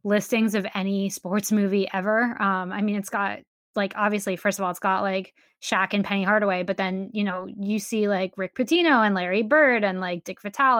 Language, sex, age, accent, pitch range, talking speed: English, female, 10-29, American, 190-220 Hz, 215 wpm